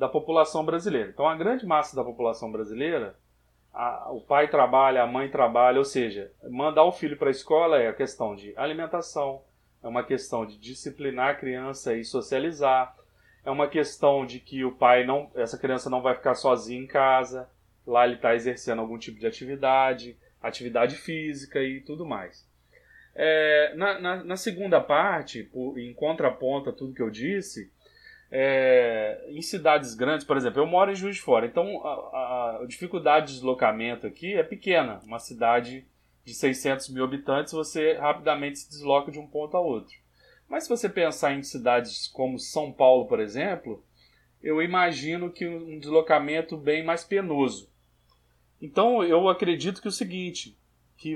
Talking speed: 170 wpm